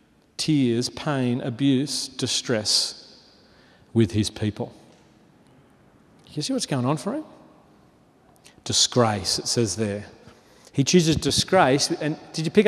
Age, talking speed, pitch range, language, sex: 40-59, 120 wpm, 130-165 Hz, English, male